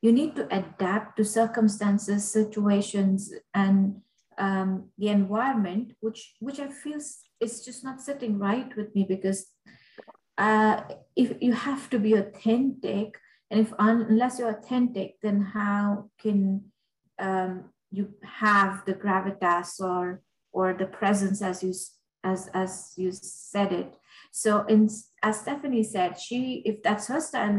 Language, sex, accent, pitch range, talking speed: English, female, Indian, 195-230 Hz, 140 wpm